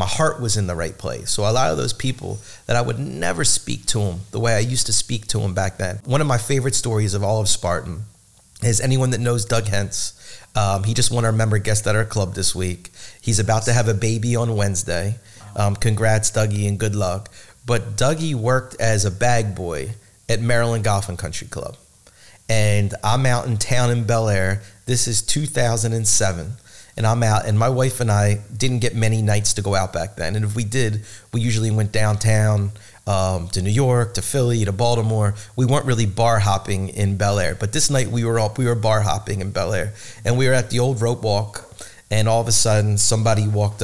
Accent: American